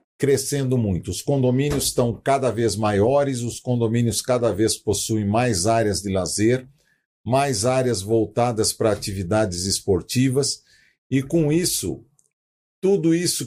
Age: 50-69